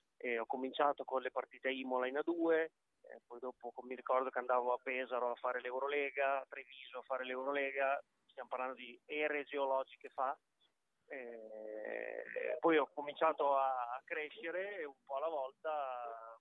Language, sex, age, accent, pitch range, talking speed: Italian, male, 20-39, native, 125-145 Hz, 160 wpm